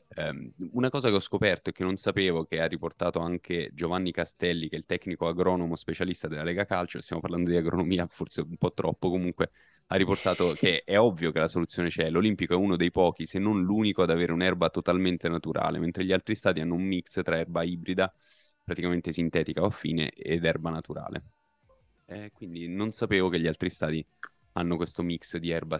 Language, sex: Italian, male